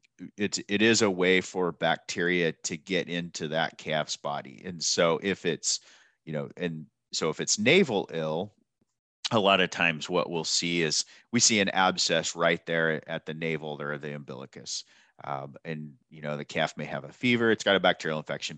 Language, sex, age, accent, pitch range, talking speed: English, male, 30-49, American, 80-95 Hz, 195 wpm